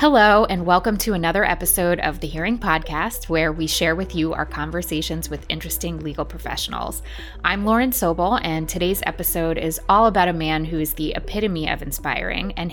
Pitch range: 150-180 Hz